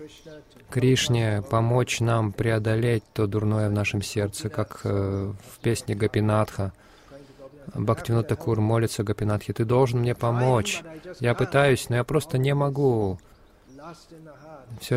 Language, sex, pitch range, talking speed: Russian, male, 110-135 Hz, 110 wpm